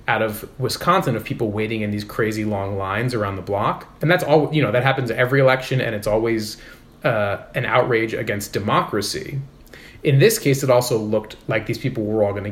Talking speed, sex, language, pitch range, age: 205 wpm, male, English, 110-135 Hz, 30-49